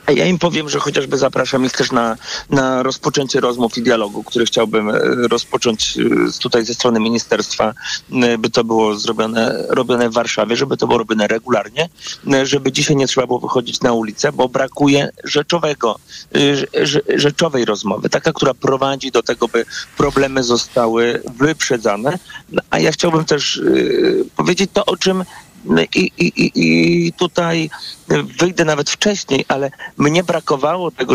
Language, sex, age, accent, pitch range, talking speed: Polish, male, 40-59, native, 120-155 Hz, 150 wpm